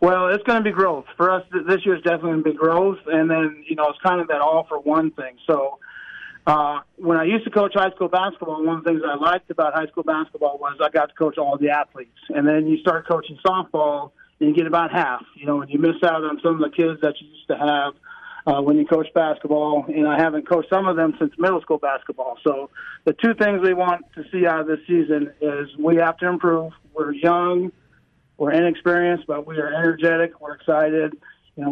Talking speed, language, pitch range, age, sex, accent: 235 wpm, English, 150-175 Hz, 40-59, male, American